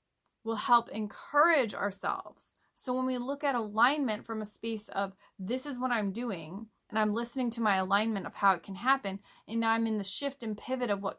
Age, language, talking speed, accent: 20-39, English, 215 wpm, American